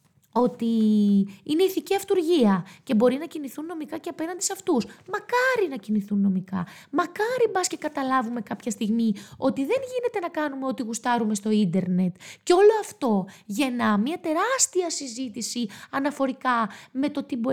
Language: Greek